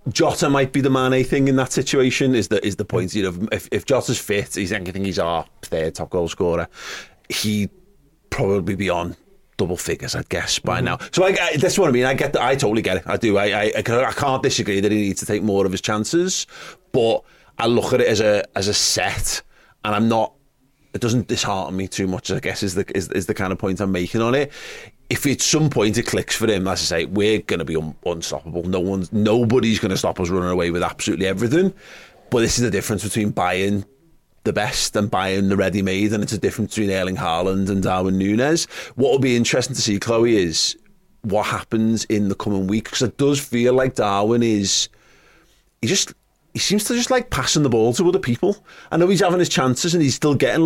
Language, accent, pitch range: English, British, 100-140 Hz